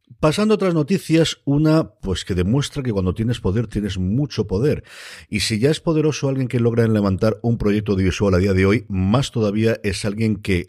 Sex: male